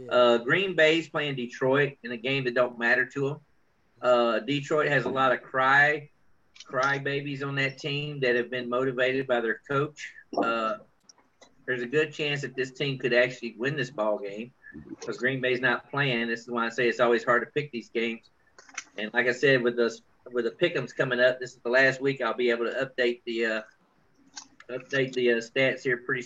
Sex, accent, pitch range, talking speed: male, American, 120-135 Hz, 215 wpm